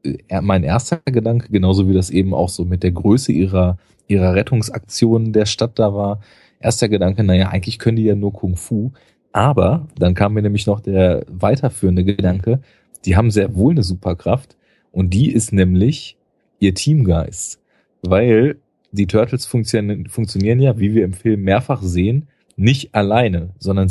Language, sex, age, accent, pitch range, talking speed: German, male, 30-49, German, 95-115 Hz, 160 wpm